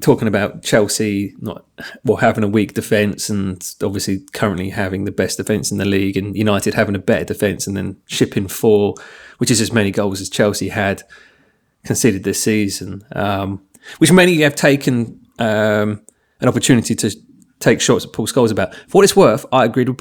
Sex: male